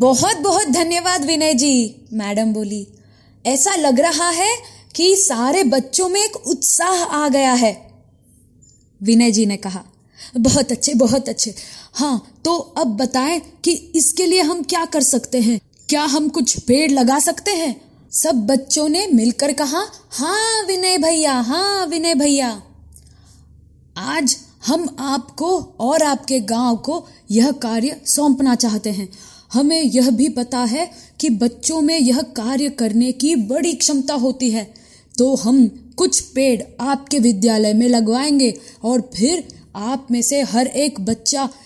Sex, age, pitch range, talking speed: female, 20-39, 230-300 Hz, 145 wpm